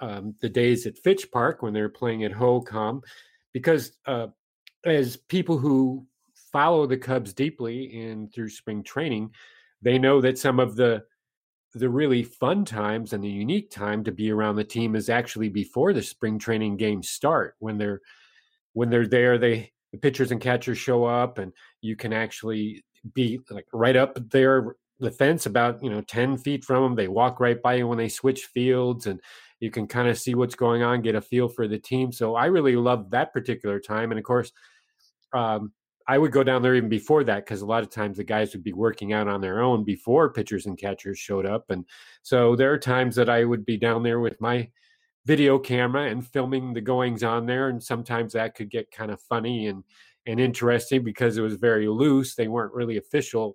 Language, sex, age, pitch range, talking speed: English, male, 40-59, 110-125 Hz, 205 wpm